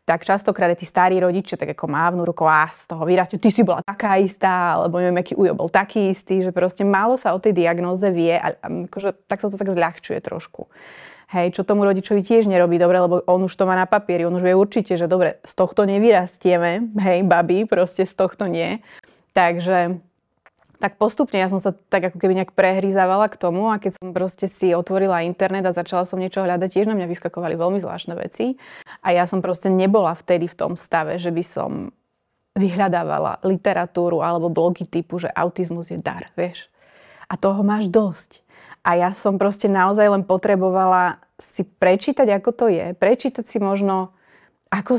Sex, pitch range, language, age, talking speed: female, 180-200 Hz, Slovak, 20-39, 190 wpm